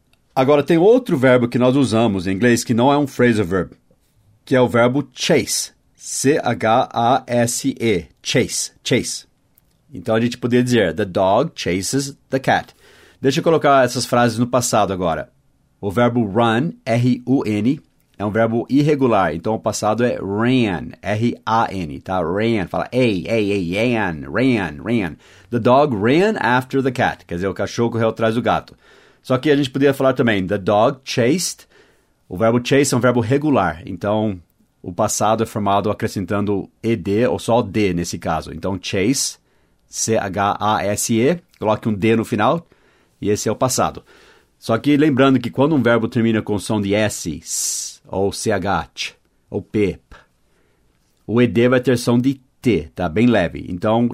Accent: Brazilian